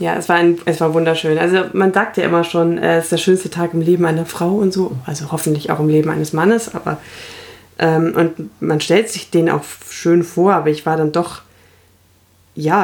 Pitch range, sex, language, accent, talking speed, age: 150-190 Hz, female, German, German, 220 wpm, 20-39